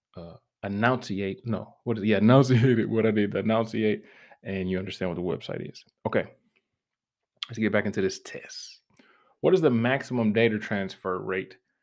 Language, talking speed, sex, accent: English, 170 wpm, male, American